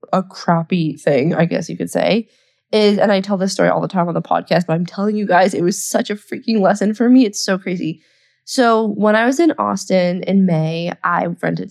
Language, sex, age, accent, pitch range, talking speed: English, female, 20-39, American, 170-215 Hz, 235 wpm